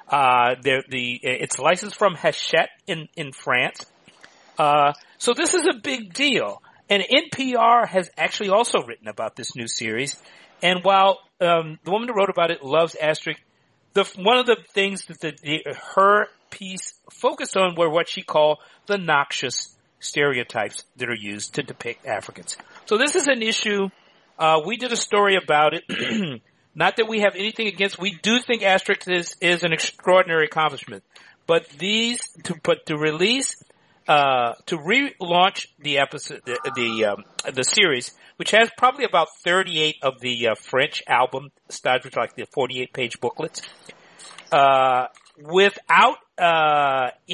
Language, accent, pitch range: English, American, 150-205 Hz